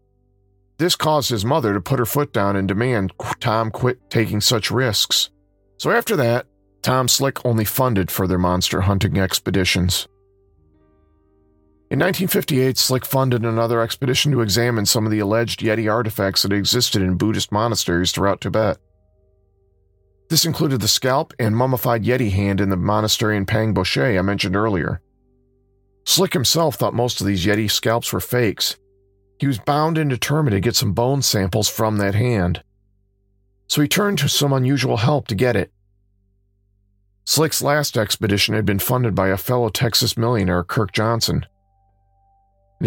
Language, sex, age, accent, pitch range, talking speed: English, male, 40-59, American, 100-125 Hz, 155 wpm